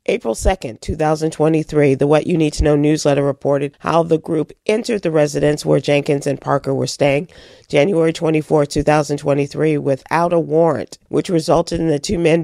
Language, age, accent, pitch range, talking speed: English, 40-59, American, 145-190 Hz, 170 wpm